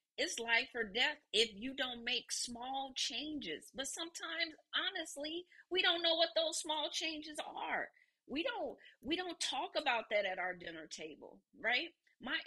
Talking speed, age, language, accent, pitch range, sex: 165 wpm, 40-59, English, American, 260-335 Hz, female